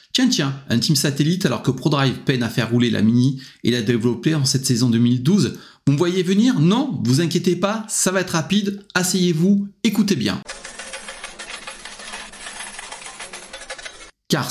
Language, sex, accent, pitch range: French, male, French, 115-150 Hz